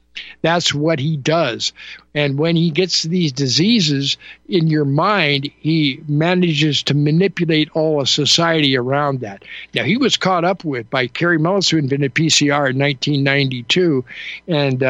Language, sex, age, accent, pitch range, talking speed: English, male, 60-79, American, 135-170 Hz, 145 wpm